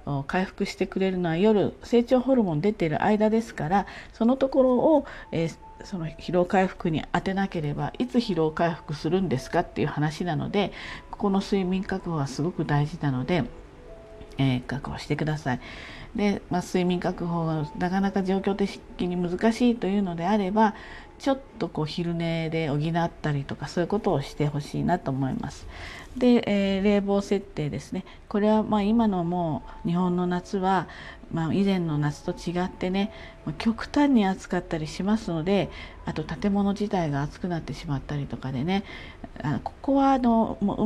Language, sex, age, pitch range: Japanese, female, 40-59, 155-210 Hz